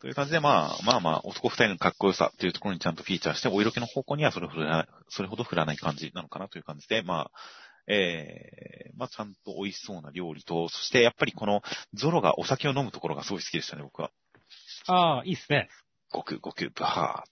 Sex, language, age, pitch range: male, Japanese, 30-49, 85-110 Hz